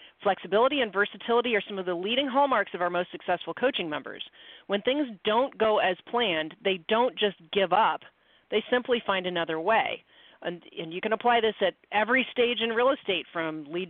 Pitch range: 180-215 Hz